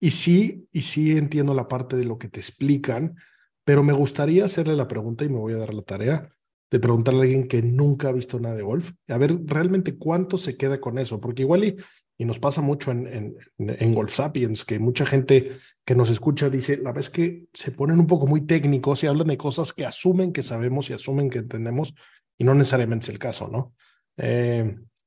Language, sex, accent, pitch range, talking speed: Spanish, male, Mexican, 120-150 Hz, 225 wpm